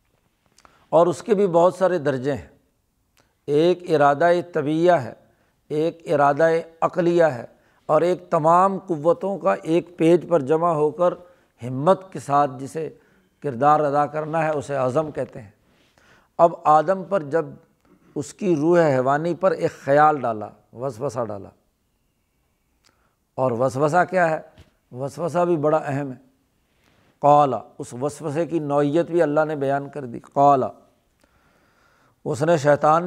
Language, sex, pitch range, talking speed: Urdu, male, 140-175 Hz, 140 wpm